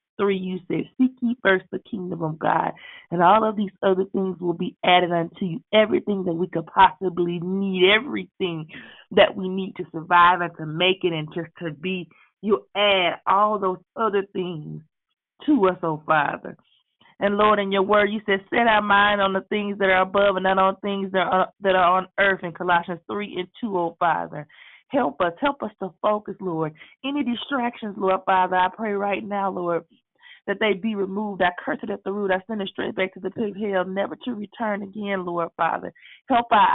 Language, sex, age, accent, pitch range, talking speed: English, female, 30-49, American, 175-205 Hz, 210 wpm